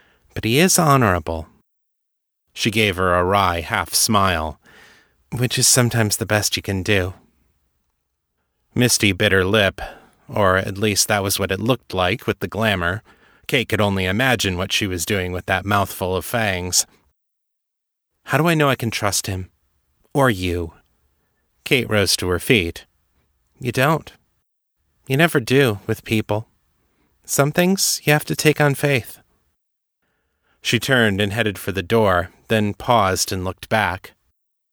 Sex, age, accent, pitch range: male, 30-49, American, 95-125 Hz